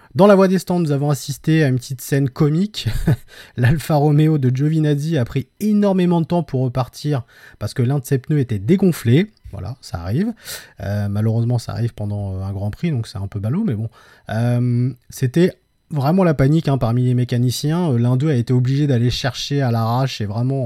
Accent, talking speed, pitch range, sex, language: French, 205 wpm, 110-150 Hz, male, French